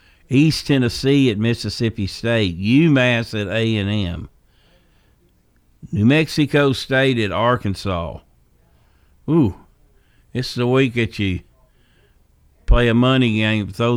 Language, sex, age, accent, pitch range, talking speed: English, male, 60-79, American, 95-125 Hz, 105 wpm